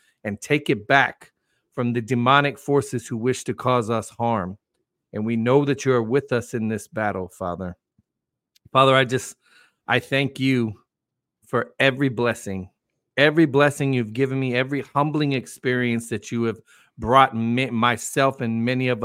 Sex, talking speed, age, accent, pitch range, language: male, 160 wpm, 40-59, American, 115-135 Hz, English